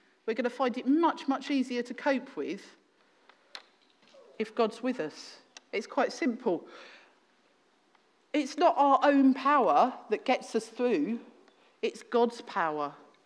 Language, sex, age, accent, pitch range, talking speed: English, female, 40-59, British, 215-285 Hz, 135 wpm